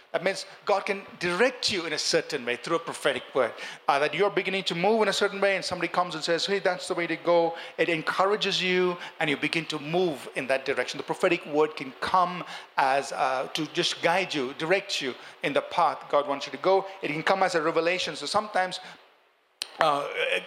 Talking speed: 225 wpm